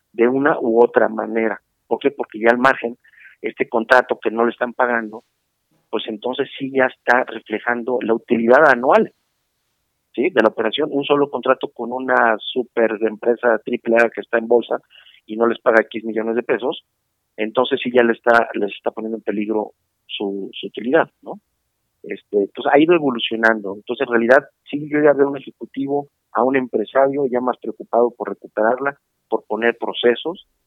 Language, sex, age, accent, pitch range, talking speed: Spanish, male, 40-59, Mexican, 105-125 Hz, 180 wpm